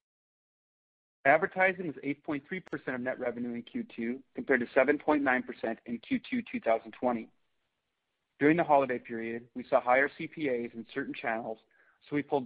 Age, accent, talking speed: 40-59, American, 130 wpm